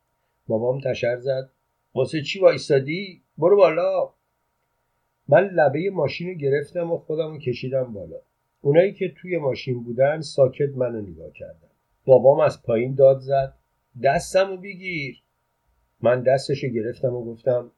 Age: 50-69